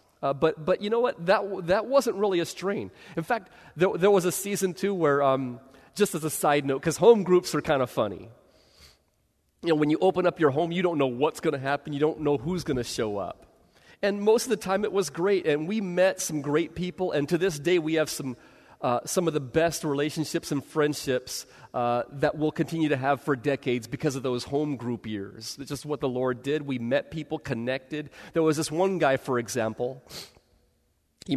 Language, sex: English, male